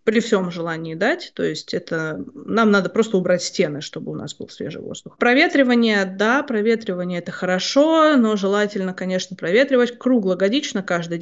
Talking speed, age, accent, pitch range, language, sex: 155 wpm, 20-39, native, 175-230 Hz, Russian, female